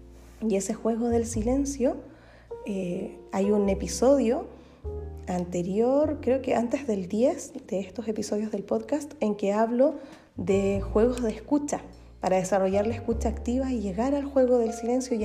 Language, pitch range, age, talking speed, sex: Spanish, 195-245 Hz, 20-39, 155 wpm, female